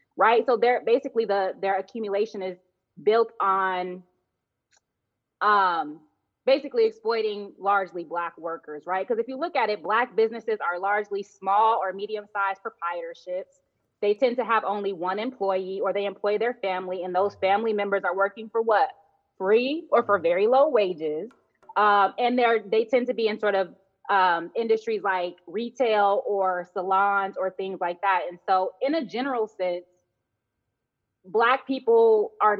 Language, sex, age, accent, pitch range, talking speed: English, female, 20-39, American, 180-225 Hz, 160 wpm